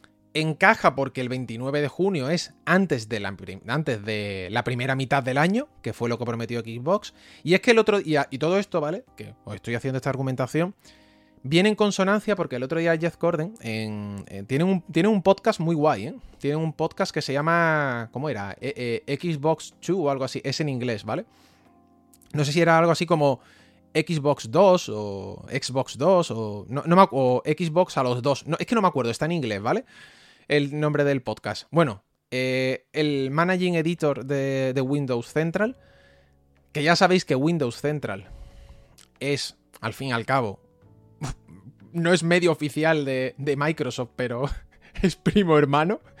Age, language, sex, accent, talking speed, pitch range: 20-39, English, male, Spanish, 185 wpm, 120-165 Hz